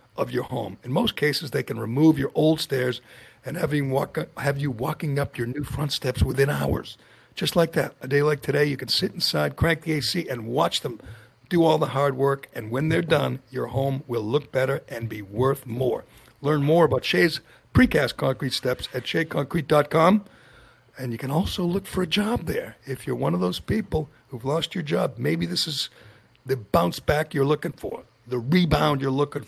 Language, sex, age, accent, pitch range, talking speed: English, male, 60-79, American, 125-155 Hz, 210 wpm